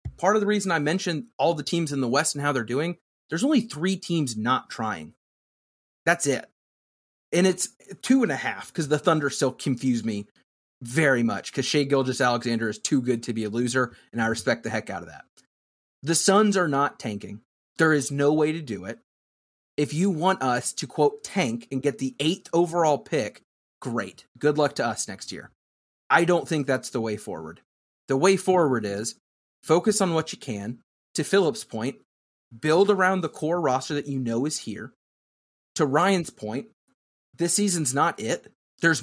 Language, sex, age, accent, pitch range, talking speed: English, male, 30-49, American, 130-180 Hz, 195 wpm